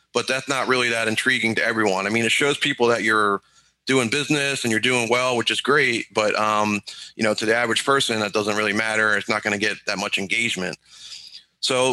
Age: 30-49